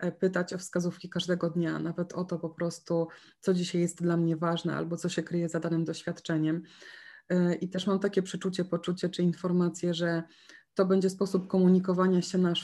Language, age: Polish, 20-39